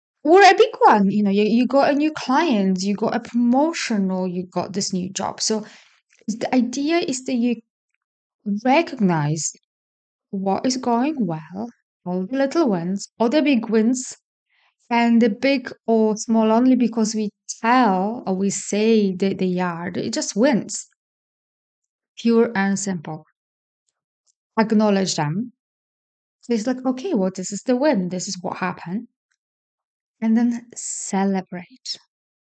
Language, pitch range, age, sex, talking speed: English, 190-240 Hz, 20-39, female, 145 wpm